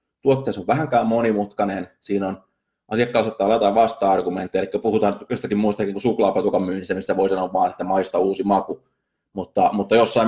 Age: 20-39